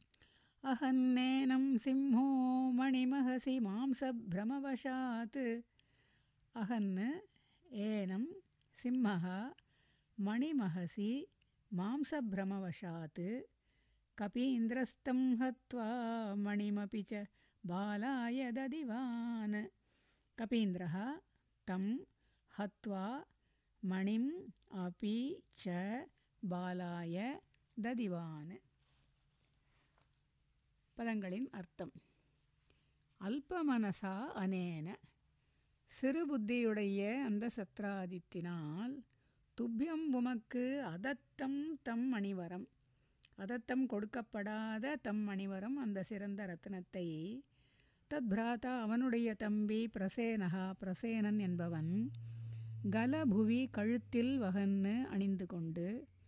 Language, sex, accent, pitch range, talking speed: Tamil, female, native, 190-255 Hz, 45 wpm